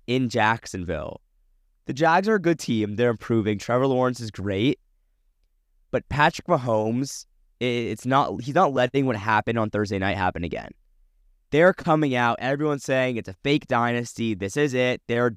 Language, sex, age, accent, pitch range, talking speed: English, male, 20-39, American, 100-125 Hz, 165 wpm